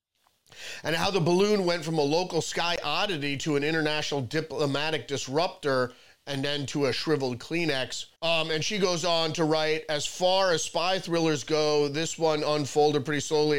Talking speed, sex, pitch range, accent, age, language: 170 wpm, male, 140-165 Hz, American, 30-49, English